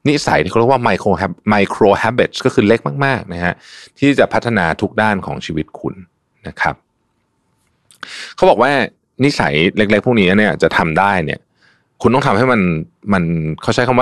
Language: Thai